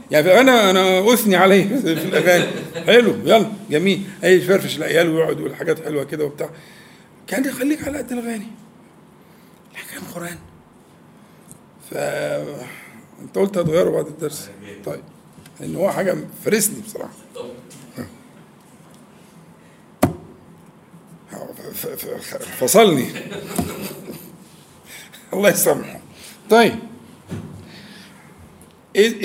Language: Arabic